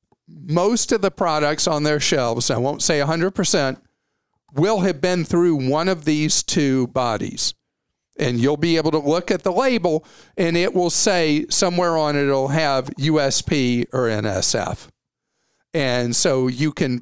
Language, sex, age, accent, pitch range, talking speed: English, male, 50-69, American, 135-175 Hz, 160 wpm